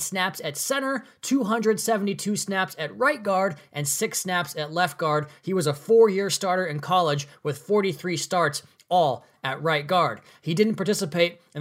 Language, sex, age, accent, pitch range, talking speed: English, male, 20-39, American, 155-200 Hz, 165 wpm